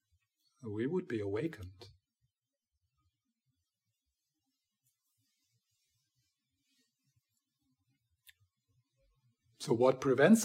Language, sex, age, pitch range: English, male, 50-69, 105-125 Hz